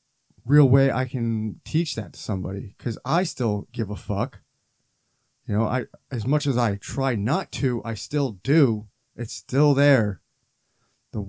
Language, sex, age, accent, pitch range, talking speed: English, male, 30-49, American, 110-135 Hz, 165 wpm